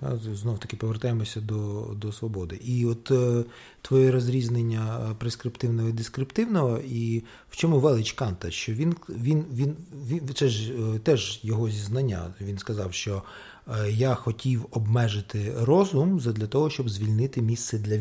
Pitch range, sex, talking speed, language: 110-150 Hz, male, 135 wpm, Ukrainian